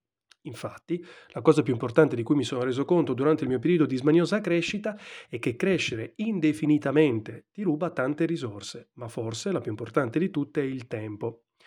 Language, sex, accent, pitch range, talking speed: Italian, male, native, 120-165 Hz, 185 wpm